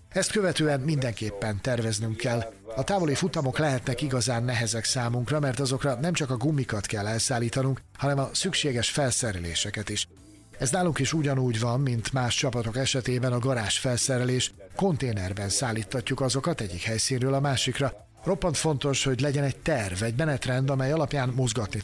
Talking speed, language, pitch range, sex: 150 wpm, Hungarian, 115-145 Hz, male